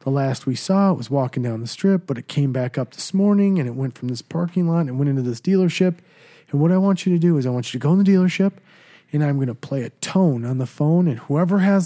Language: English